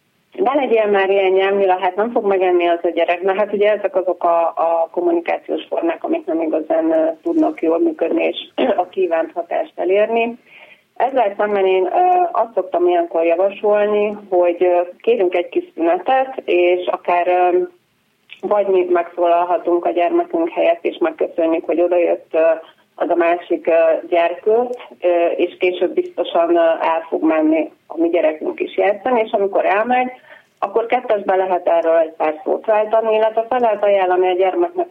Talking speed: 150 wpm